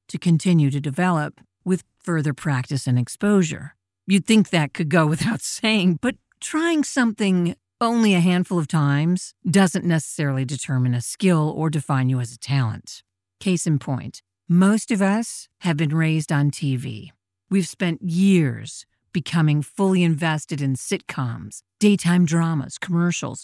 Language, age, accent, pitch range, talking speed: English, 50-69, American, 140-195 Hz, 145 wpm